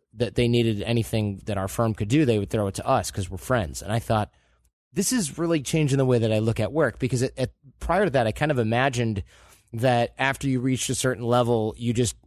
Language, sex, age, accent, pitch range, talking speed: English, male, 20-39, American, 110-130 Hz, 240 wpm